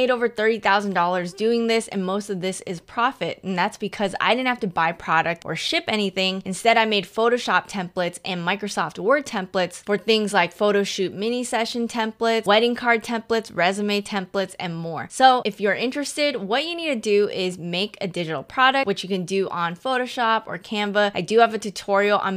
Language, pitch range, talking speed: English, 185-230 Hz, 200 wpm